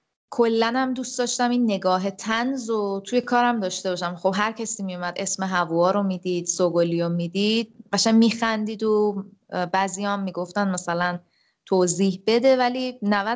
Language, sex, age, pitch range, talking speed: Persian, female, 20-39, 185-225 Hz, 155 wpm